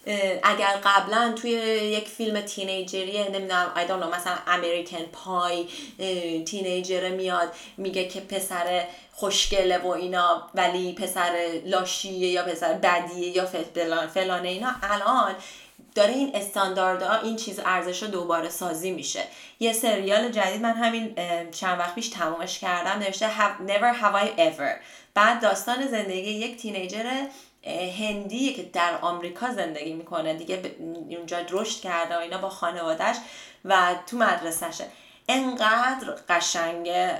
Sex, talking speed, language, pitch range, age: female, 125 wpm, Persian, 180-225 Hz, 20-39